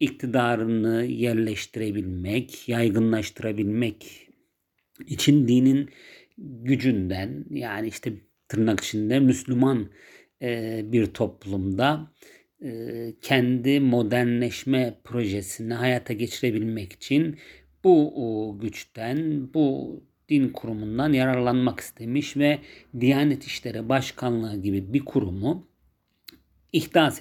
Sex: male